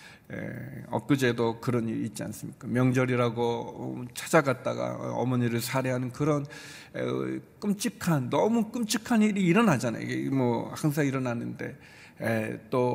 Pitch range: 115-175 Hz